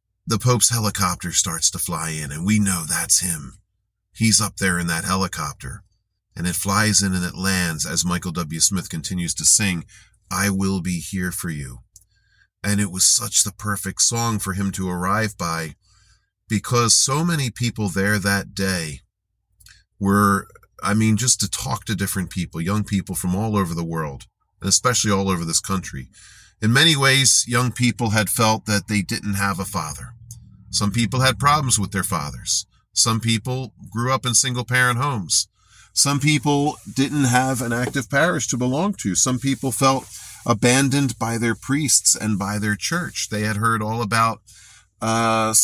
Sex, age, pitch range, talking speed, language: male, 40-59, 95-120 Hz, 175 wpm, English